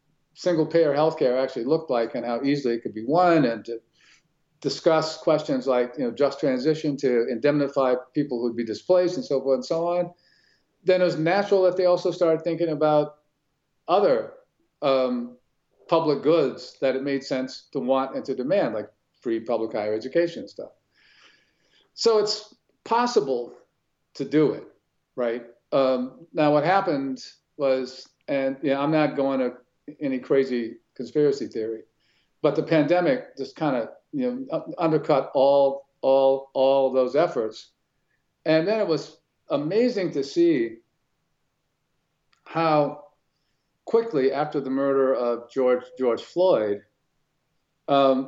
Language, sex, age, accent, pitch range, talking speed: English, male, 50-69, American, 135-165 Hz, 145 wpm